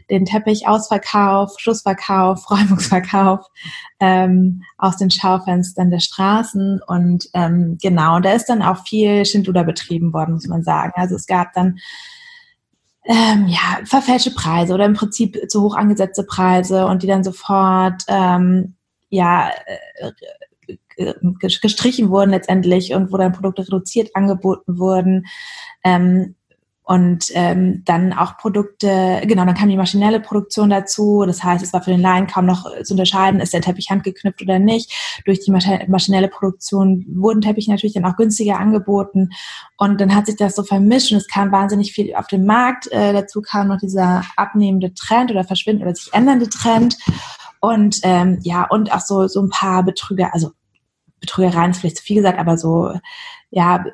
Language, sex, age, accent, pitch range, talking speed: German, female, 20-39, German, 185-210 Hz, 160 wpm